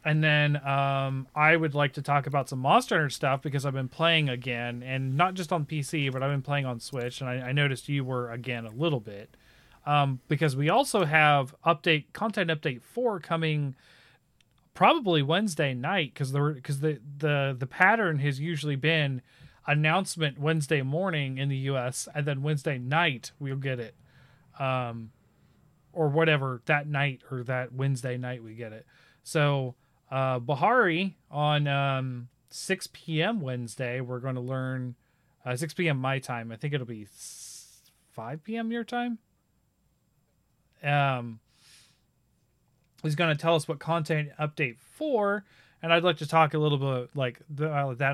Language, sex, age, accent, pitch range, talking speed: English, male, 30-49, American, 130-160 Hz, 170 wpm